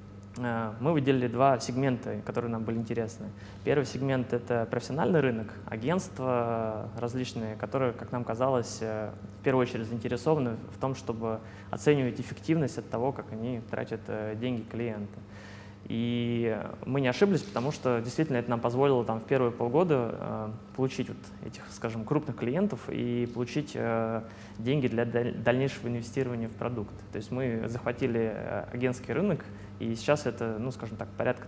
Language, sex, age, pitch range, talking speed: Russian, male, 20-39, 110-130 Hz, 140 wpm